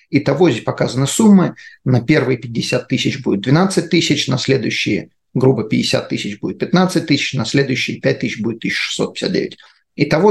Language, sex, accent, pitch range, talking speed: Russian, male, native, 130-155 Hz, 150 wpm